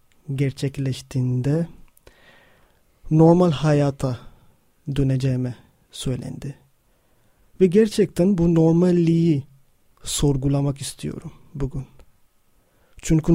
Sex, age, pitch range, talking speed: male, 30-49, 135-165 Hz, 60 wpm